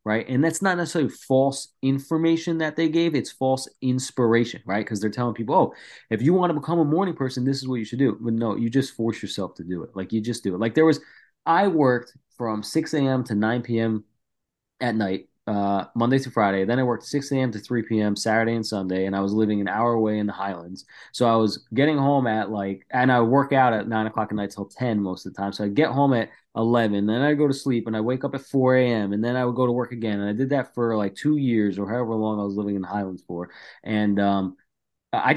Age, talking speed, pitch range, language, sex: 20-39, 260 wpm, 105-140 Hz, English, male